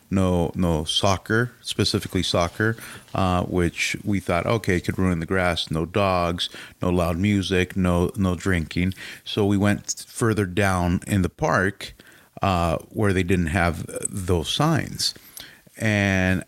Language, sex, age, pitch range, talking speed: English, male, 30-49, 90-105 Hz, 140 wpm